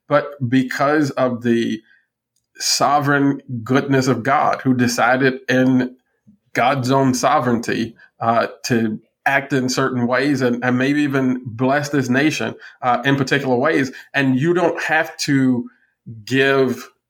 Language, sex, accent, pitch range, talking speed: English, male, American, 120-135 Hz, 130 wpm